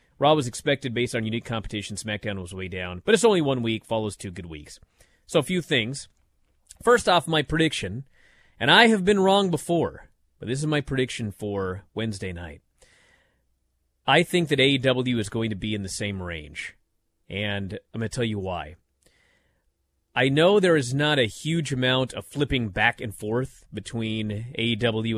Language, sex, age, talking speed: English, male, 30-49, 180 wpm